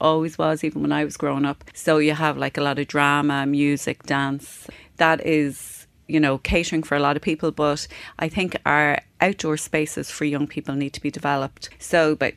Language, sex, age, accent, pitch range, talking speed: English, female, 30-49, Irish, 145-160 Hz, 210 wpm